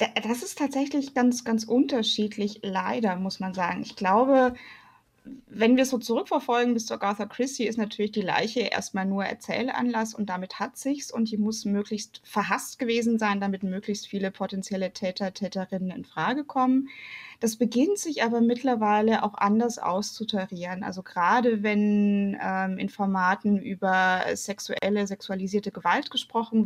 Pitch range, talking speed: 200-235 Hz, 150 wpm